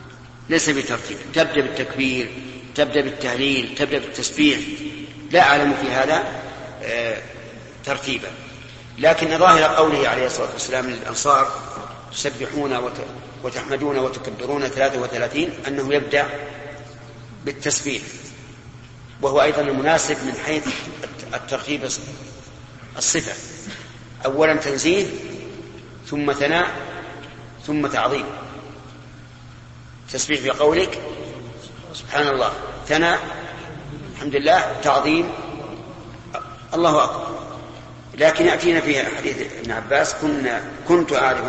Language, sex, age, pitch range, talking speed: Arabic, male, 50-69, 125-150 Hz, 85 wpm